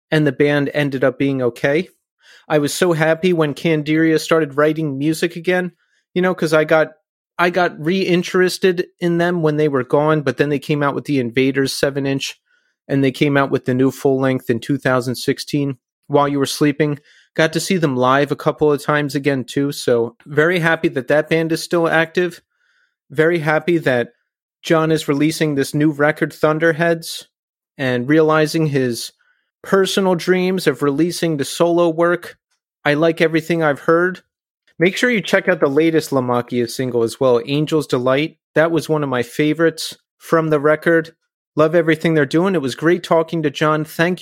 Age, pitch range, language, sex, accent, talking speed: 30-49, 140-170 Hz, English, male, American, 185 wpm